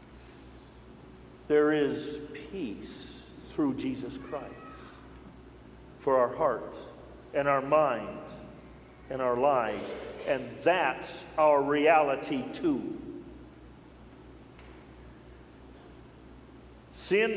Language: English